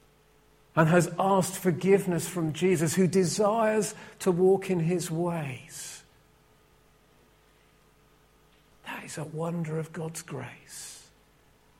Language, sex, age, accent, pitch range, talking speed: English, male, 50-69, British, 145-185 Hz, 100 wpm